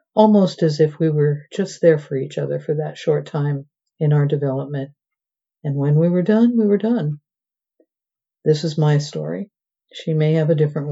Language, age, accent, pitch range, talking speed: English, 60-79, American, 145-160 Hz, 185 wpm